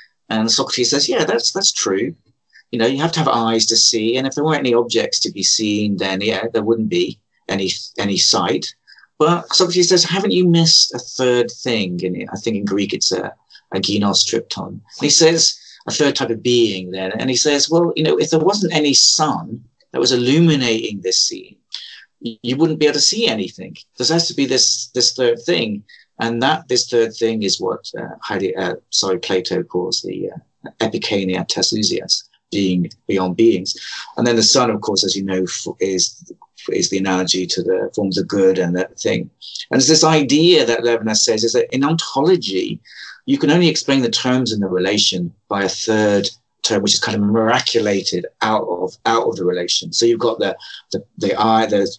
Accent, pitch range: British, 105-145 Hz